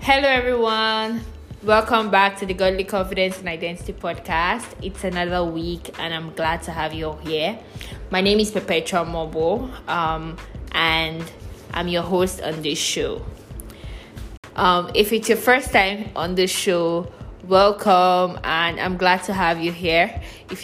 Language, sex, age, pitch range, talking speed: English, female, 20-39, 165-190 Hz, 155 wpm